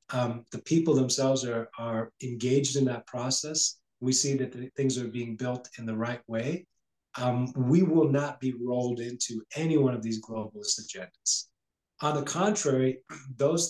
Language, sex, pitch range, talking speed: English, male, 125-150 Hz, 165 wpm